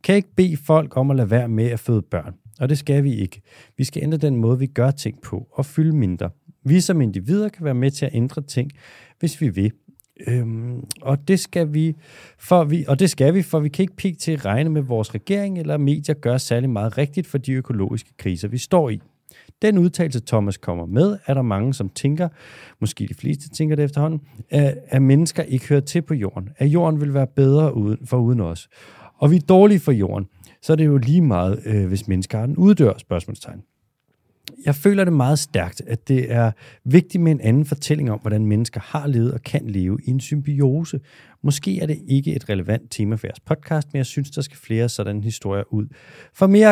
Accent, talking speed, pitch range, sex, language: native, 220 wpm, 115-155 Hz, male, Danish